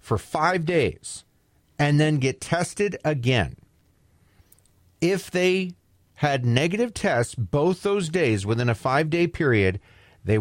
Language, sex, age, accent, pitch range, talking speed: English, male, 40-59, American, 100-145 Hz, 125 wpm